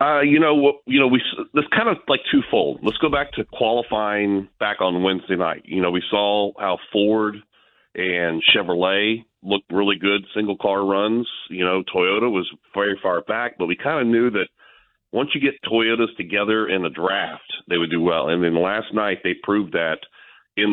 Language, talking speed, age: English, 195 wpm, 40-59